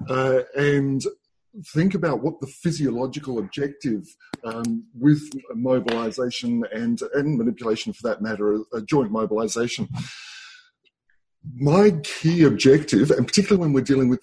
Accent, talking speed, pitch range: Australian, 120 wpm, 125-185 Hz